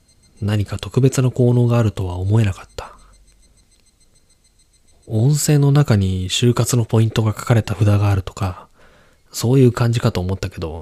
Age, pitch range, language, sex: 20-39, 95-115 Hz, Japanese, male